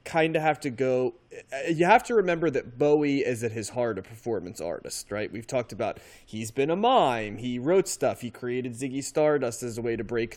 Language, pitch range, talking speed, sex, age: English, 115-140 Hz, 220 wpm, male, 20-39